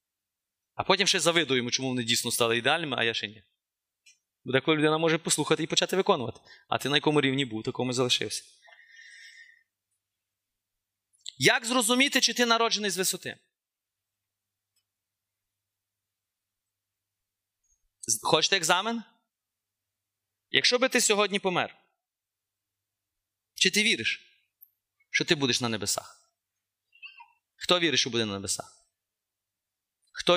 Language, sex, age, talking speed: Ukrainian, male, 30-49, 115 wpm